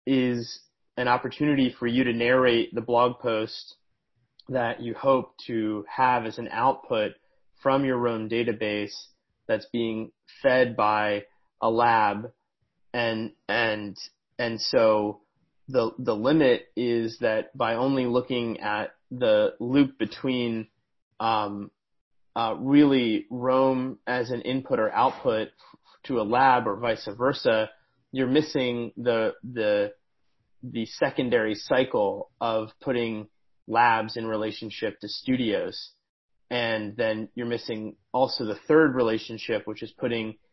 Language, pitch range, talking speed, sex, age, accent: English, 110-130 Hz, 125 wpm, male, 30-49, American